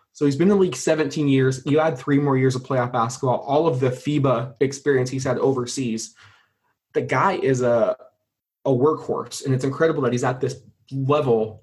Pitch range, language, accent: 125-145 Hz, English, American